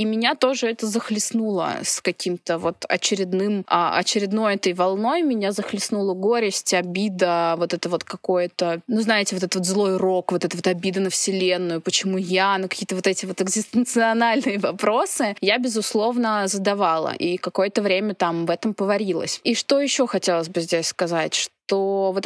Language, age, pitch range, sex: Russian, 20-39, 180-215 Hz, female